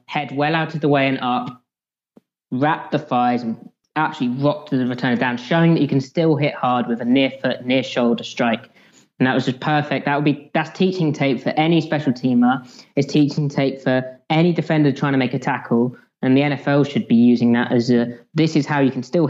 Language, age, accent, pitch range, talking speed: English, 20-39, British, 125-150 Hz, 225 wpm